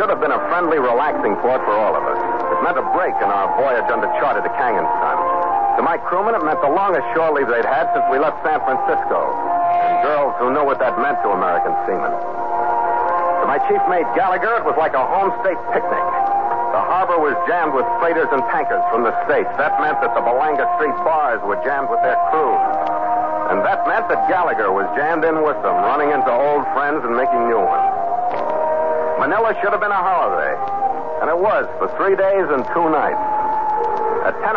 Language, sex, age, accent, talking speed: English, male, 60-79, American, 210 wpm